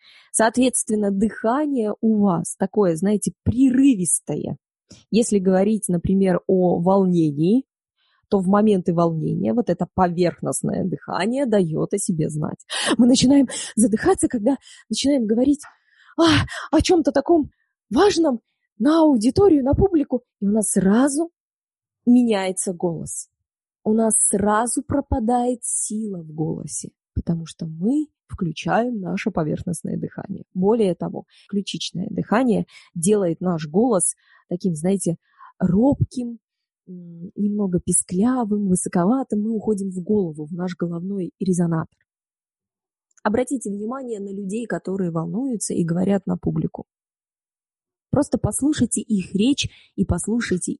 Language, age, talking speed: Russian, 20-39, 115 wpm